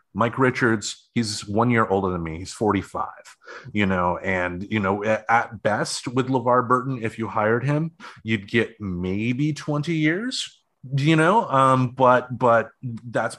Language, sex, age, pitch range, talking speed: English, male, 30-49, 100-125 Hz, 155 wpm